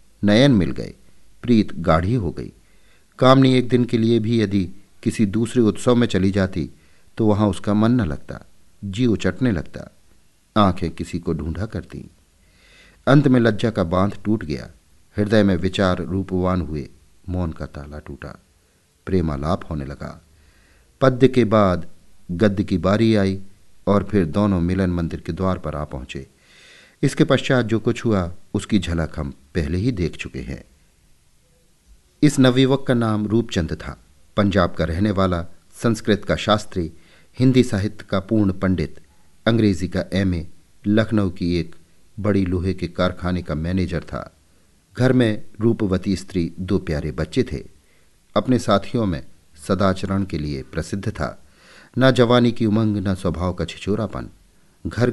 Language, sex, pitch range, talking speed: Hindi, male, 85-110 Hz, 150 wpm